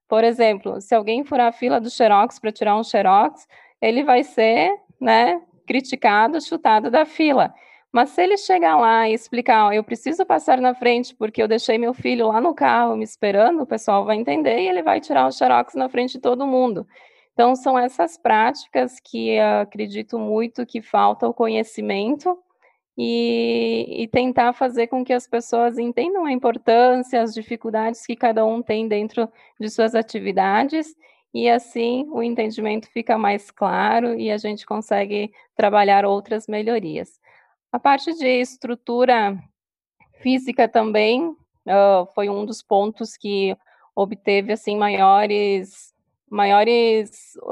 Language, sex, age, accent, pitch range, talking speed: Portuguese, female, 20-39, Brazilian, 210-250 Hz, 150 wpm